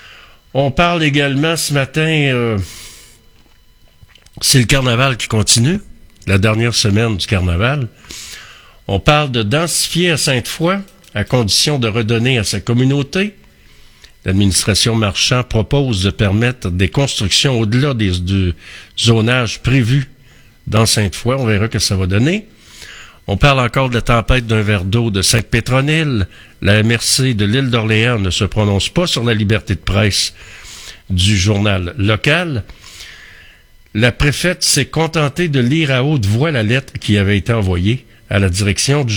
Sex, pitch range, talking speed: male, 105-135 Hz, 145 wpm